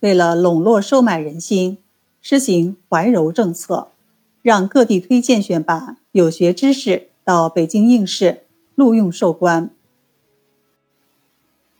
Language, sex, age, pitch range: Chinese, female, 50-69, 175-235 Hz